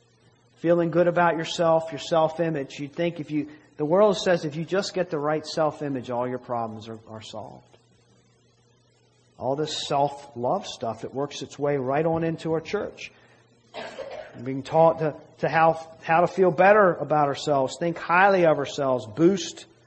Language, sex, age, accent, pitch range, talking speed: English, male, 40-59, American, 125-185 Hz, 170 wpm